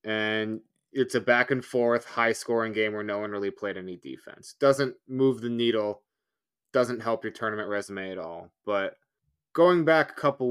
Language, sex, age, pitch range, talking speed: English, male, 20-39, 110-130 Hz, 185 wpm